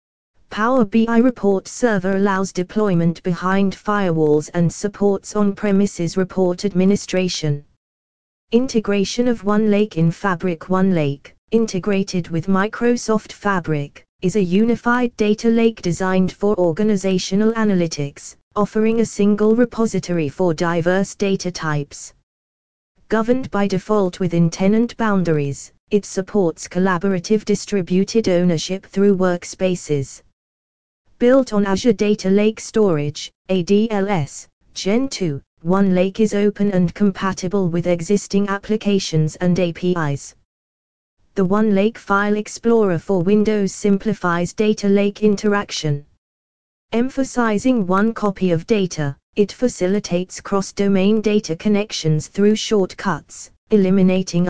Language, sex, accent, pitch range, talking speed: English, female, British, 175-210 Hz, 105 wpm